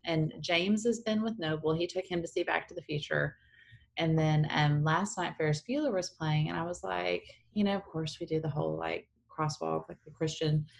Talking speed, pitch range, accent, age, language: 230 wpm, 145-190 Hz, American, 20-39, English